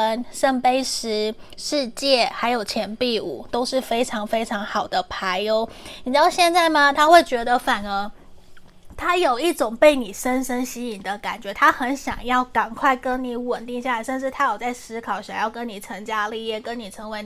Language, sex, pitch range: Chinese, female, 225-275 Hz